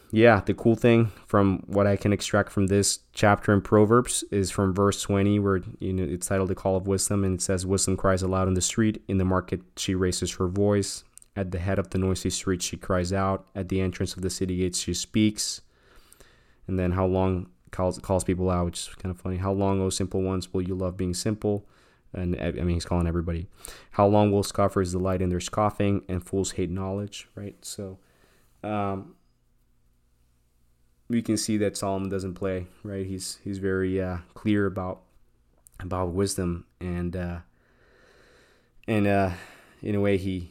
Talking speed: 195 wpm